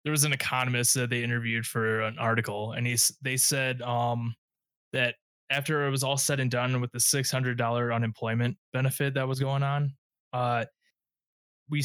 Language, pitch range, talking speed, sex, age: English, 115-130 Hz, 170 wpm, male, 20-39